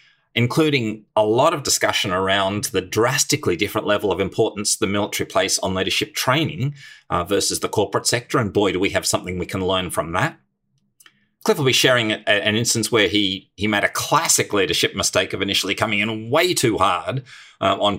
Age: 30-49